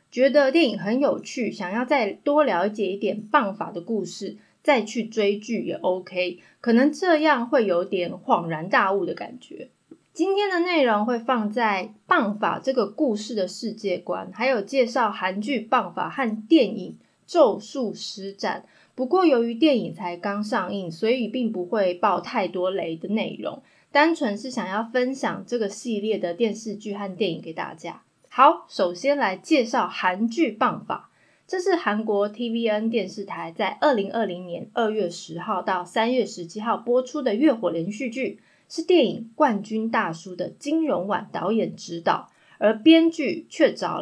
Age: 20-39